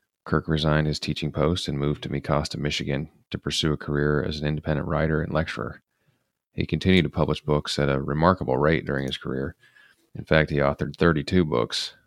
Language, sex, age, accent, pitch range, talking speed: English, male, 30-49, American, 75-85 Hz, 190 wpm